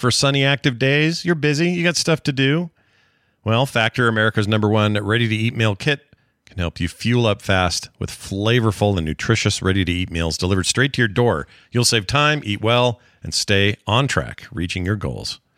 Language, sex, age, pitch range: English, male, 40-59, 100-140 Hz